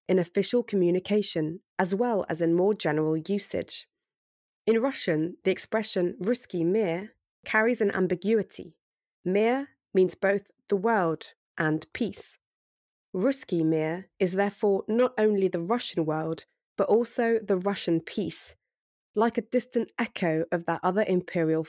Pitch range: 170-220 Hz